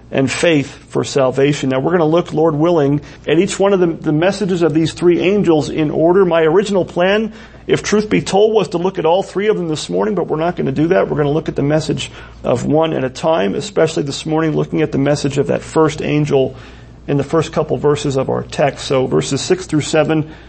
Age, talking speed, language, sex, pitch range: 40-59, 245 wpm, English, male, 150-205 Hz